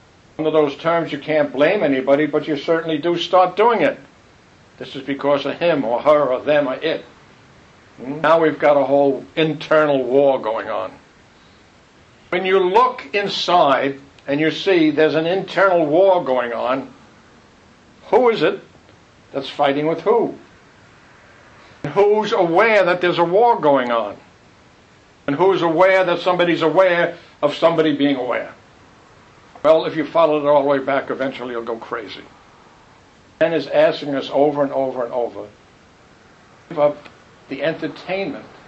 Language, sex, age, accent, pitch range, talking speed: English, male, 60-79, American, 135-165 Hz, 150 wpm